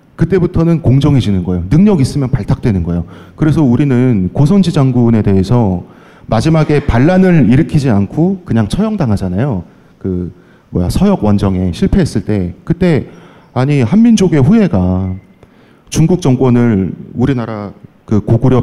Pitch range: 100-155 Hz